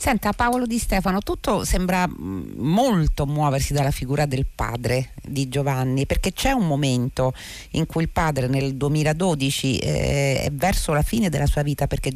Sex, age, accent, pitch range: female, 40-59, native, 130-170 Hz